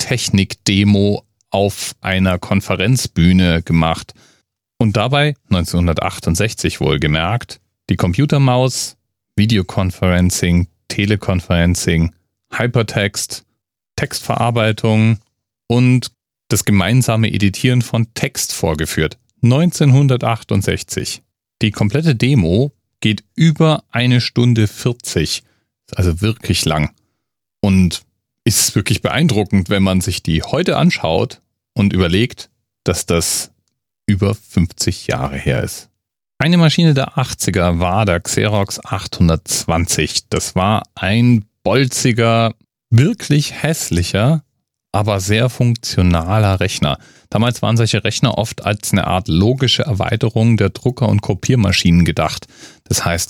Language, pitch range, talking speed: German, 95-120 Hz, 100 wpm